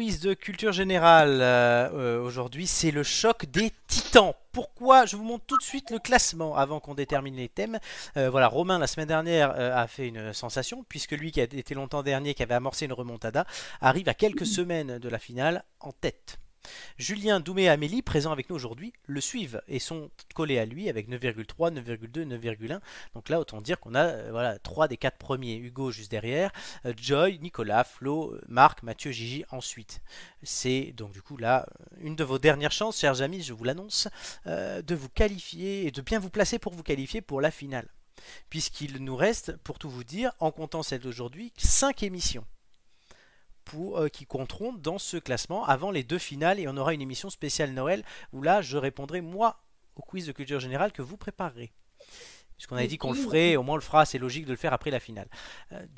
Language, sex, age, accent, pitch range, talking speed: French, male, 30-49, French, 130-185 Hz, 200 wpm